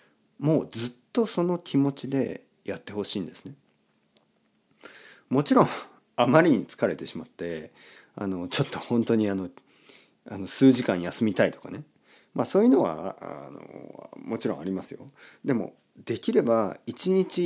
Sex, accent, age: male, native, 40-59